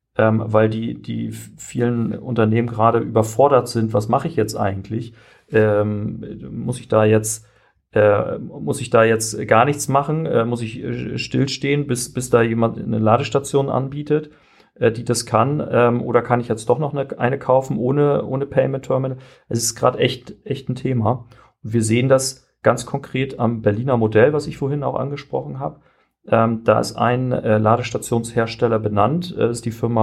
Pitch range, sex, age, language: 110-125 Hz, male, 40-59, German